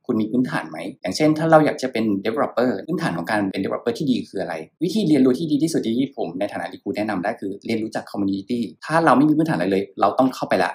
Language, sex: Thai, male